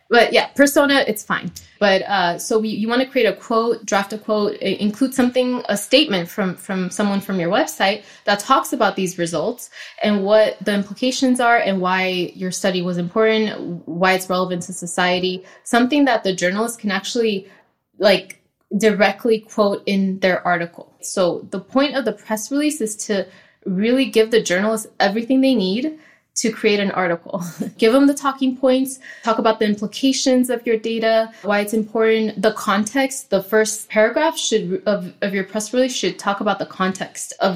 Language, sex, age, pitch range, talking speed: English, female, 20-39, 185-225 Hz, 180 wpm